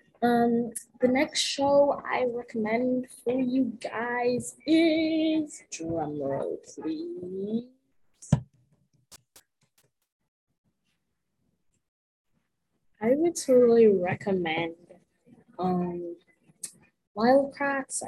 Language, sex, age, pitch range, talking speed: English, female, 10-29, 175-260 Hz, 60 wpm